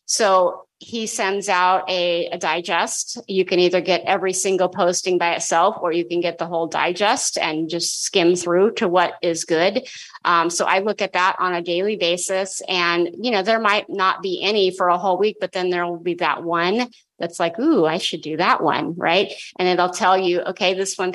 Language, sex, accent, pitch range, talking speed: English, female, American, 175-215 Hz, 220 wpm